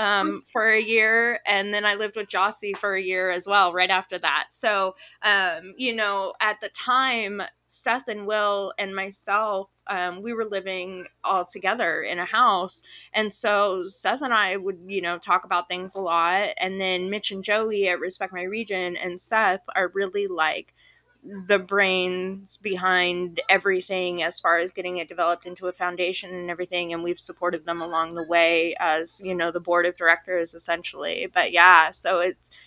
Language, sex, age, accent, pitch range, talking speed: English, female, 20-39, American, 175-205 Hz, 185 wpm